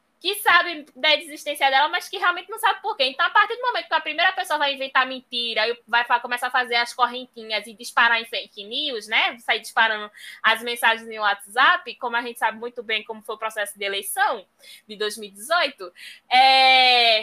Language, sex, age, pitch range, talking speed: Portuguese, female, 10-29, 235-330 Hz, 200 wpm